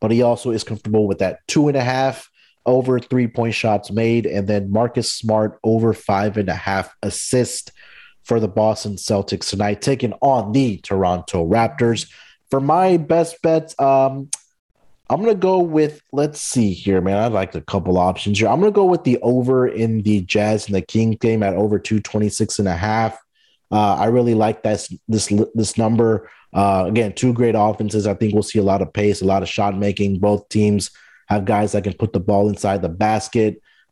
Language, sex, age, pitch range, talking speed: English, male, 30-49, 100-120 Hz, 205 wpm